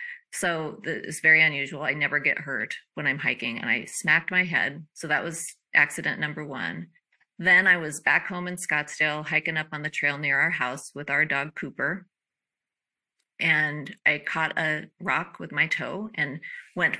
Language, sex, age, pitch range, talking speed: English, female, 30-49, 155-200 Hz, 180 wpm